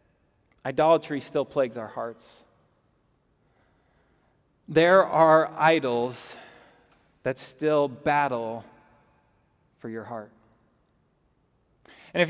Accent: American